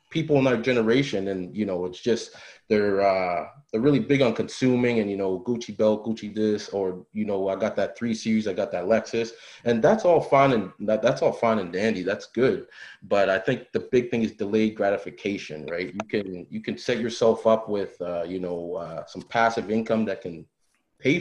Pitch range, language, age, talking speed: 95-130 Hz, English, 30-49, 210 wpm